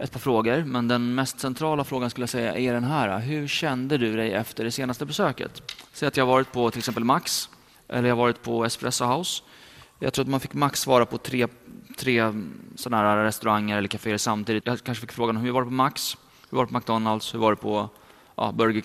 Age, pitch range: 20-39, 110-130 Hz